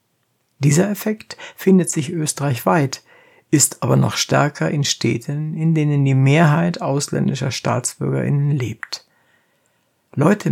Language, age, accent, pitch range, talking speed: German, 60-79, German, 130-165 Hz, 110 wpm